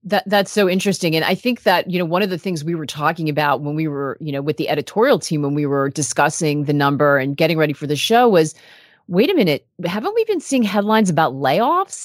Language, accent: English, American